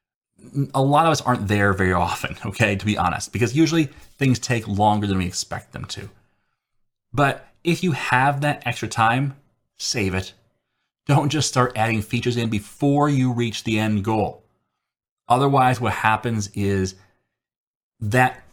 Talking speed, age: 155 wpm, 30-49